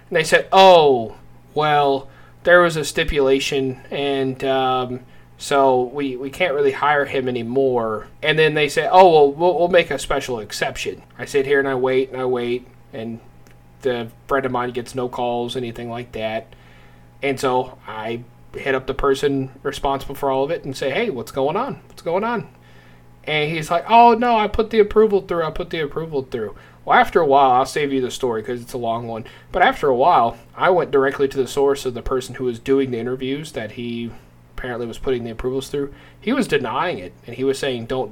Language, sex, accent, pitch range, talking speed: English, male, American, 120-160 Hz, 215 wpm